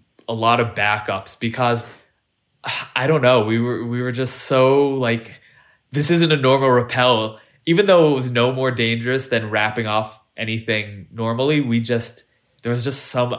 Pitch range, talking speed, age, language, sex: 115-135 Hz, 170 wpm, 20-39, English, male